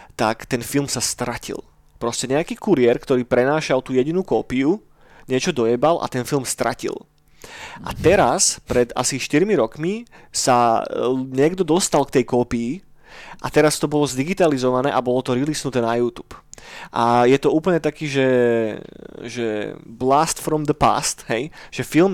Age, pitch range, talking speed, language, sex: 30-49, 120-150 Hz, 150 wpm, Slovak, male